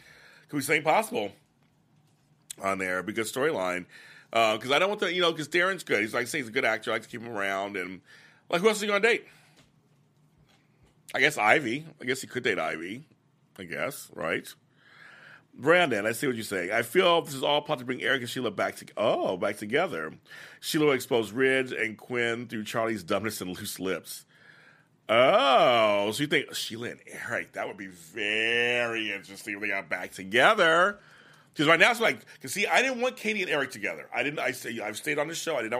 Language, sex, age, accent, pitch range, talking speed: English, male, 40-59, American, 105-150 Hz, 220 wpm